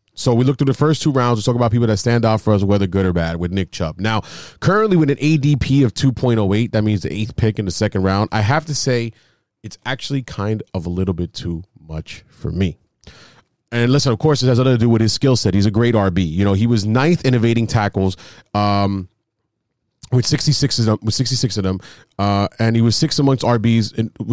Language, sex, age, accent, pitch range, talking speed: English, male, 30-49, American, 105-130 Hz, 240 wpm